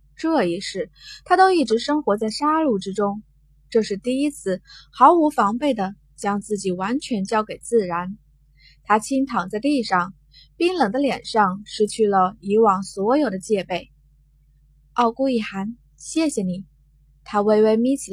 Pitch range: 180-260 Hz